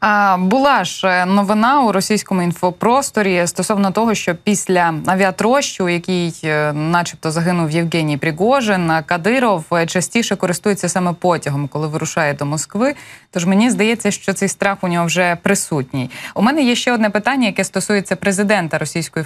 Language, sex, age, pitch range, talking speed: Ukrainian, female, 20-39, 165-205 Hz, 145 wpm